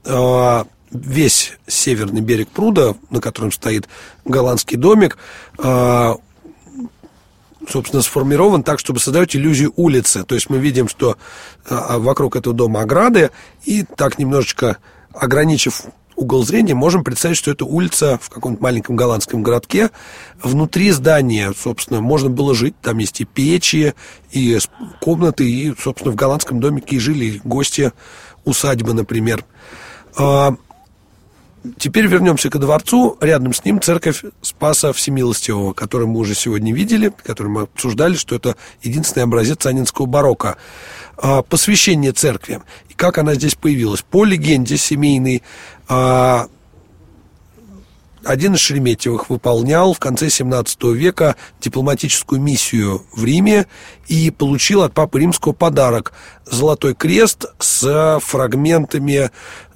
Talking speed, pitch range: 120 wpm, 120-155 Hz